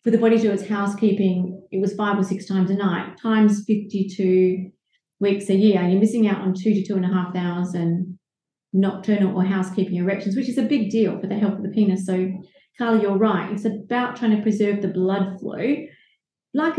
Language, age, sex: English, 30-49, female